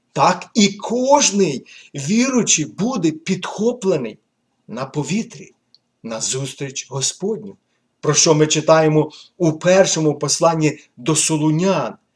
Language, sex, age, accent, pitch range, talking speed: Ukrainian, male, 50-69, native, 130-165 Hz, 100 wpm